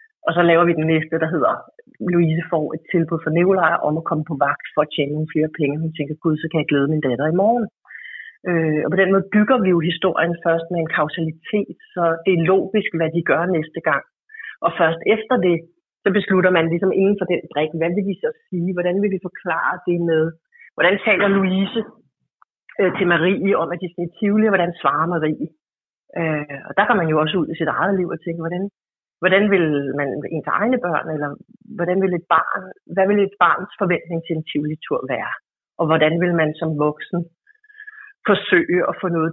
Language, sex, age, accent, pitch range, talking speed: Danish, female, 30-49, native, 155-190 Hz, 215 wpm